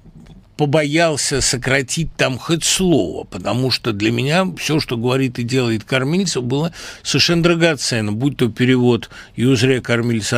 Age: 60-79